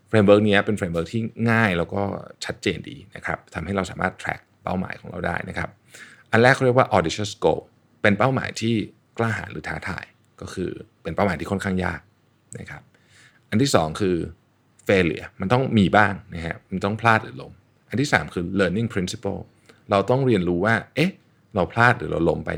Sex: male